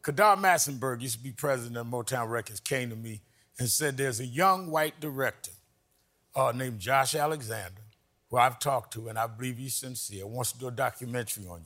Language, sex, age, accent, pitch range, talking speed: English, male, 50-69, American, 120-150 Hz, 195 wpm